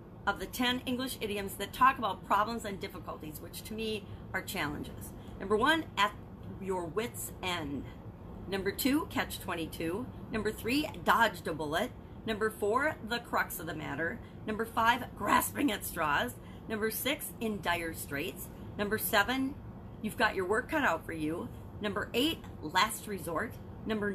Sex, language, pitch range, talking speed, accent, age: female, English, 195-240 Hz, 155 wpm, American, 40-59